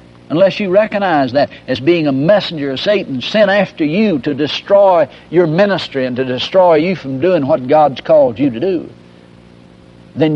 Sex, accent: male, American